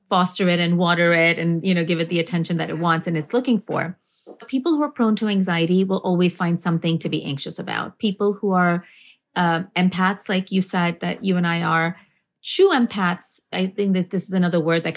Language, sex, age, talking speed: English, female, 30-49, 225 wpm